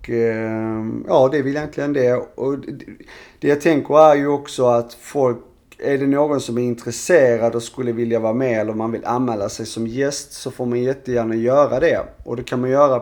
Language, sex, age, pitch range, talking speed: Swedish, male, 30-49, 115-135 Hz, 205 wpm